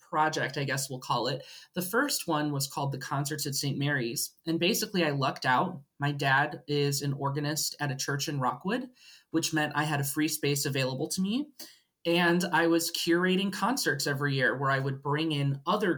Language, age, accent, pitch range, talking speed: English, 20-39, American, 140-175 Hz, 205 wpm